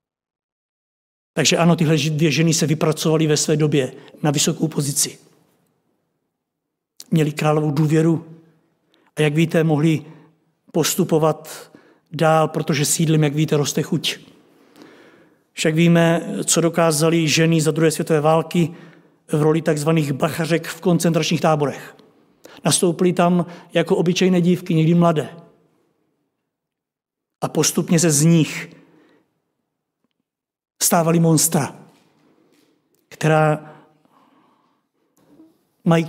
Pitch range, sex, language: 155-170 Hz, male, Czech